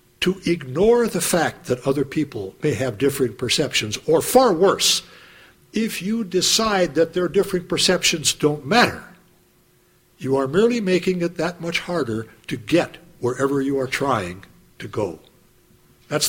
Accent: American